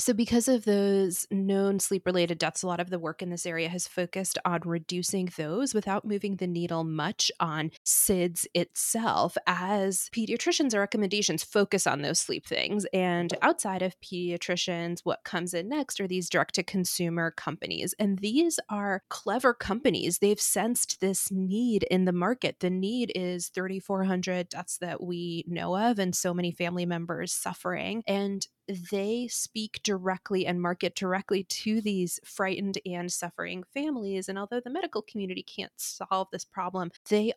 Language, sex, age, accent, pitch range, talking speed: English, female, 20-39, American, 175-205 Hz, 160 wpm